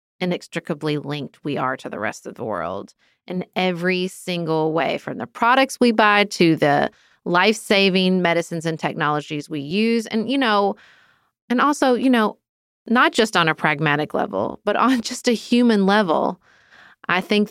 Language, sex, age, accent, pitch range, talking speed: English, female, 30-49, American, 165-205 Hz, 165 wpm